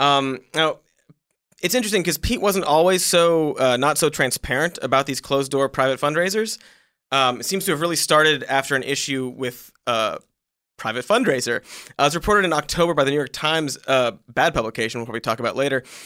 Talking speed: 185 wpm